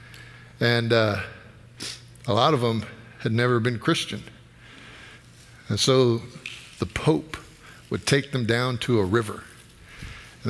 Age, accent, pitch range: 50-69, American, 110-130 Hz